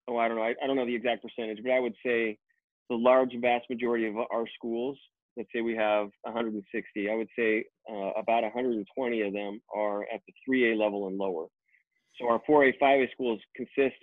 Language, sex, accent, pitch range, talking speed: English, male, American, 105-125 Hz, 205 wpm